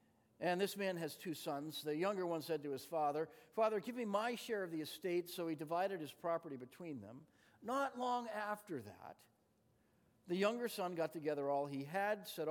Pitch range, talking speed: 145-200 Hz, 195 wpm